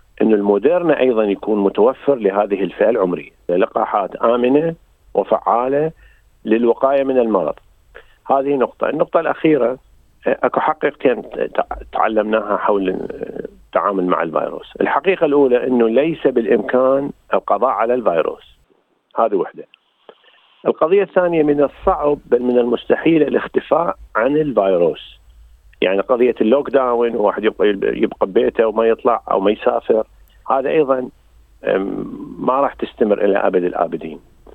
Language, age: Arabic, 40-59